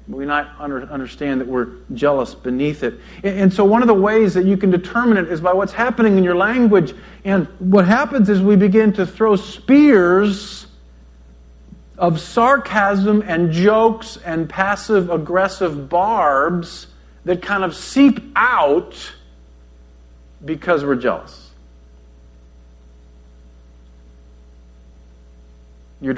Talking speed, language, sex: 115 wpm, English, male